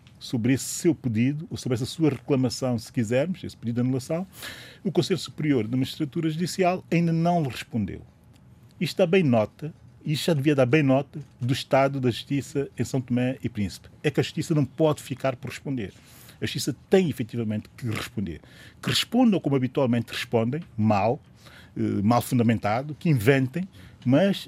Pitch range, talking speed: 120-155 Hz, 170 wpm